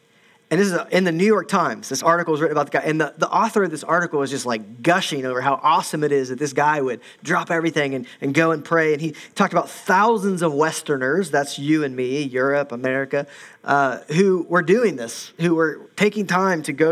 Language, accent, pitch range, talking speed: English, American, 145-185 Hz, 235 wpm